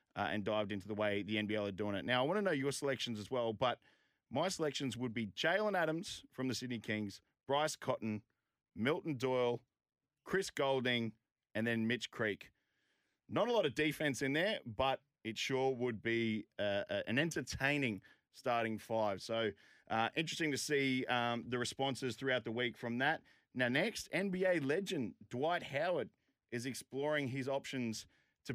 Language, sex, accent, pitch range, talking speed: English, male, Australian, 110-135 Hz, 170 wpm